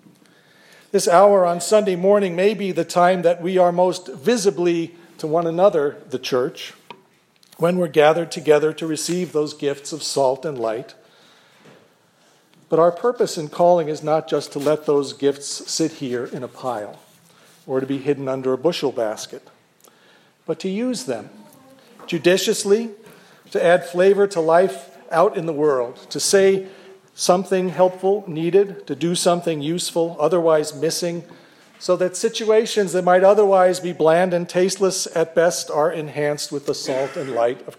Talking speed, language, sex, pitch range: 160 wpm, English, male, 155-190 Hz